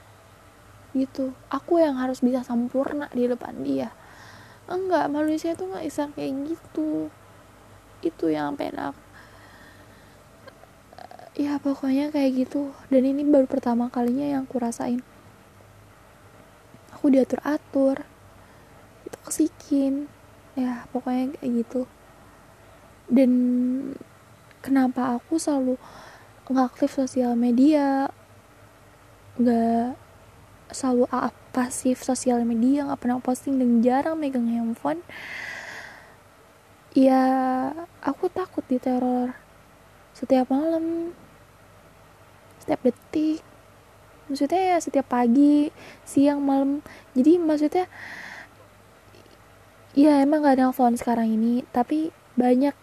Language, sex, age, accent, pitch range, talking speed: Indonesian, female, 10-29, native, 235-285 Hz, 95 wpm